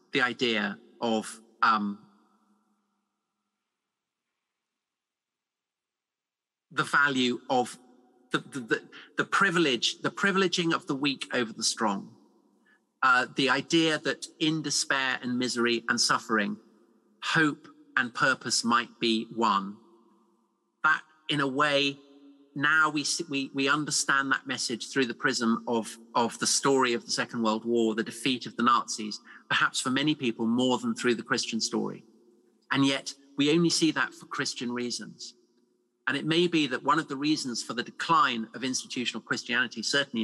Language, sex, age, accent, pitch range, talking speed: English, male, 40-59, British, 115-140 Hz, 150 wpm